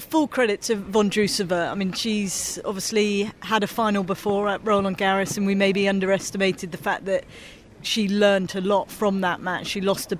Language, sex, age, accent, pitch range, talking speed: English, female, 30-49, British, 185-200 Hz, 195 wpm